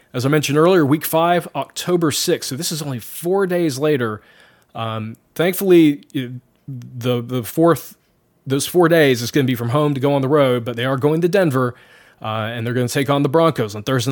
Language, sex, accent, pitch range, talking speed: English, male, American, 125-165 Hz, 215 wpm